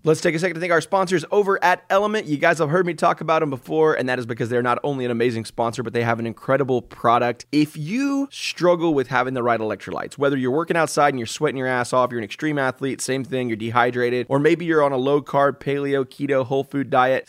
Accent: American